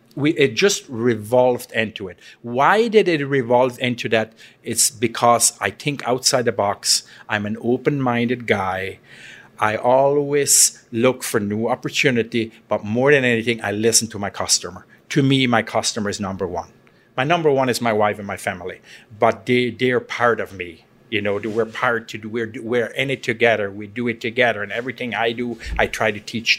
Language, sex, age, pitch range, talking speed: English, male, 50-69, 105-125 Hz, 185 wpm